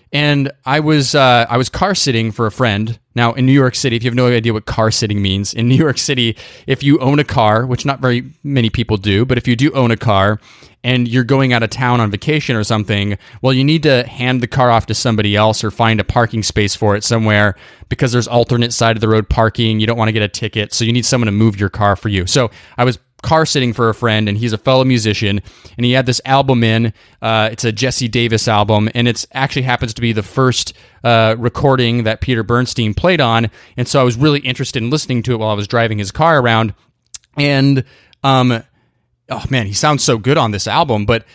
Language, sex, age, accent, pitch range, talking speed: English, male, 20-39, American, 110-130 Hz, 245 wpm